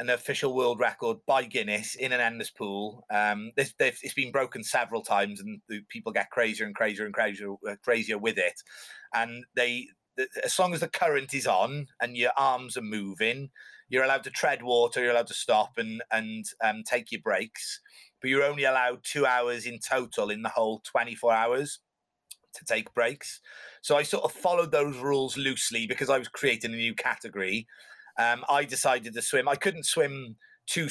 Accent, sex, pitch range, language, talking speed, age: British, male, 115-145 Hz, English, 195 wpm, 30-49